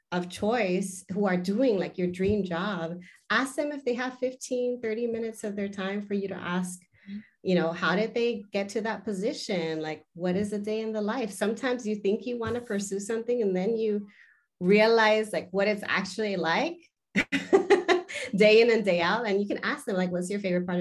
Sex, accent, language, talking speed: female, American, English, 210 wpm